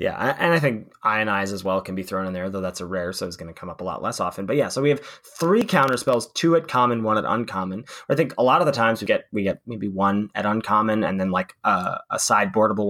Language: English